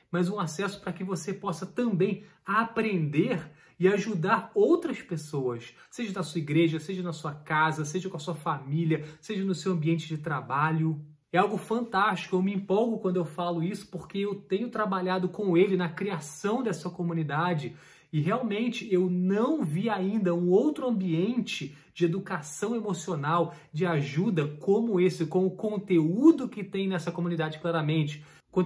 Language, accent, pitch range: Portuguese, Brazilian, 160-195 Hz